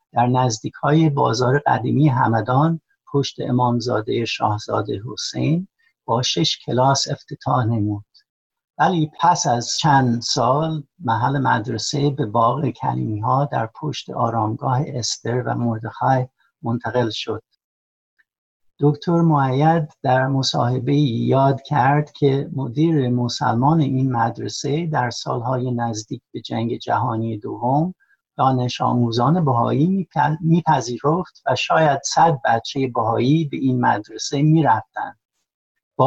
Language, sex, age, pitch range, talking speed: Persian, male, 60-79, 120-150 Hz, 110 wpm